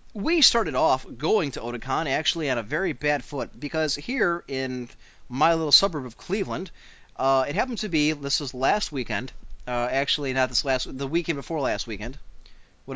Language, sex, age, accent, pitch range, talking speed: English, male, 30-49, American, 130-170 Hz, 185 wpm